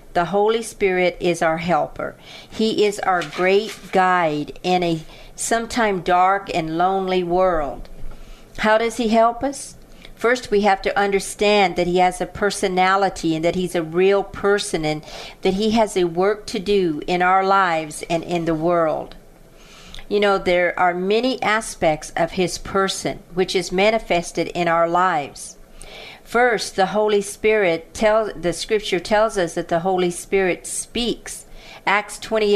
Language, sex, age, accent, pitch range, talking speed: English, female, 50-69, American, 175-205 Hz, 155 wpm